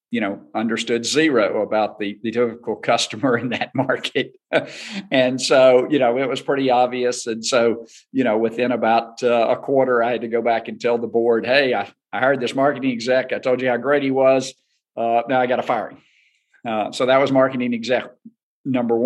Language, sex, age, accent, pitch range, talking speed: English, male, 50-69, American, 115-130 Hz, 210 wpm